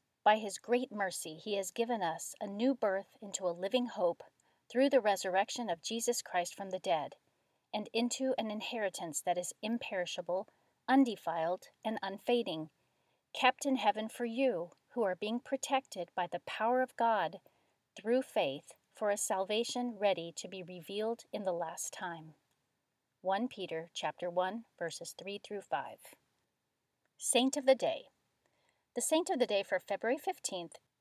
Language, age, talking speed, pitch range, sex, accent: English, 40-59, 155 wpm, 185-245 Hz, female, American